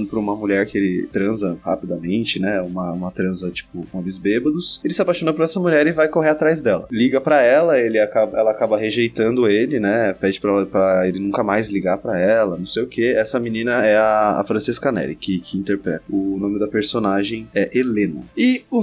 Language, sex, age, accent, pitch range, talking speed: Portuguese, male, 20-39, Brazilian, 110-155 Hz, 215 wpm